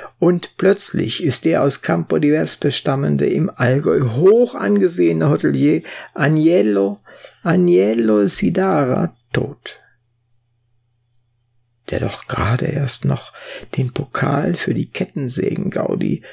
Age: 60-79